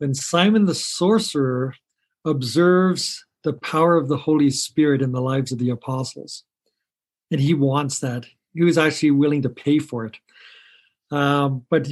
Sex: male